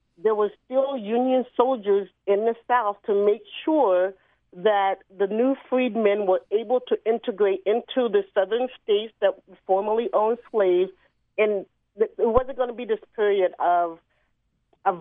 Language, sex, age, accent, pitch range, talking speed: English, female, 40-59, American, 195-250 Hz, 150 wpm